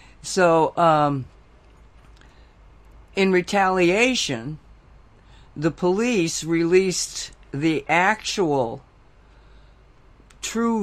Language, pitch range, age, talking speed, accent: English, 130-160 Hz, 60-79, 55 wpm, American